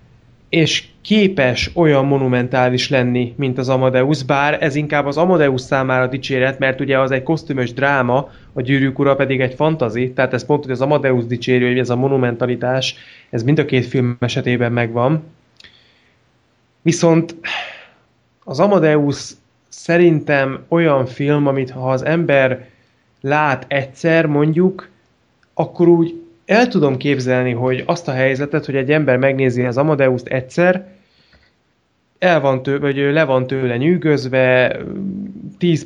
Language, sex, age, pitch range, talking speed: Hungarian, male, 20-39, 130-165 Hz, 135 wpm